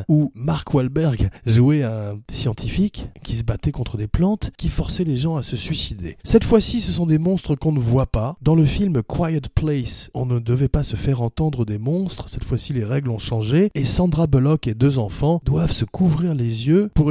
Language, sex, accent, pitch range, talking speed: French, male, French, 120-155 Hz, 215 wpm